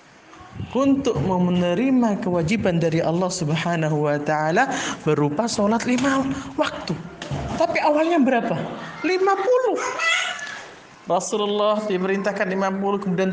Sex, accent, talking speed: male, native, 90 wpm